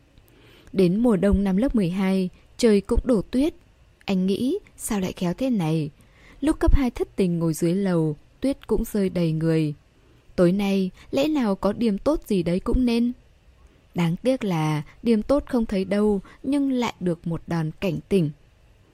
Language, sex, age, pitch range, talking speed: Vietnamese, female, 10-29, 175-235 Hz, 175 wpm